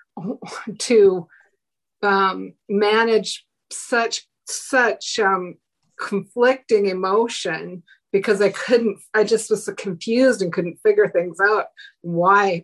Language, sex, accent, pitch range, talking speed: English, female, American, 180-215 Hz, 105 wpm